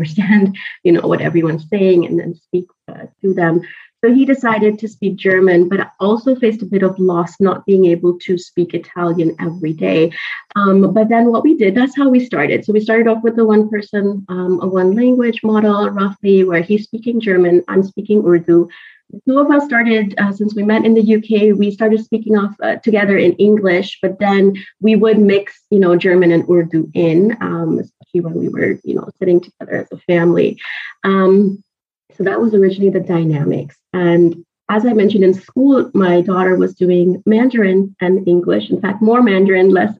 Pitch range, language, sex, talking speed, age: 180-215 Hz, English, female, 195 wpm, 30-49